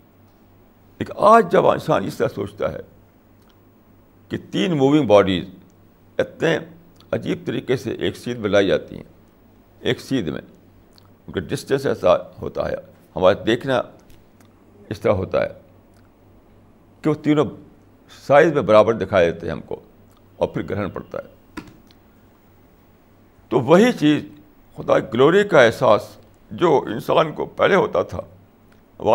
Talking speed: 135 wpm